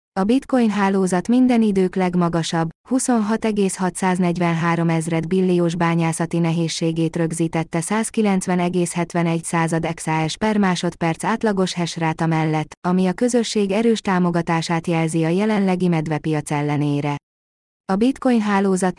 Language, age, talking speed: Hungarian, 20-39, 105 wpm